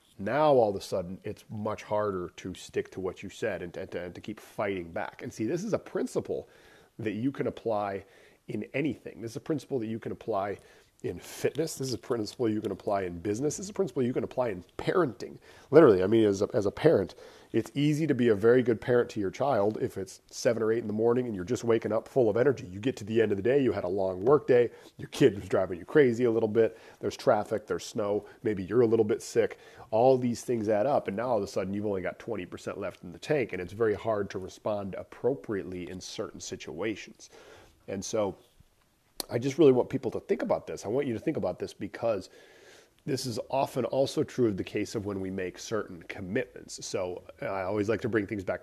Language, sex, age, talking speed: English, male, 40-59, 245 wpm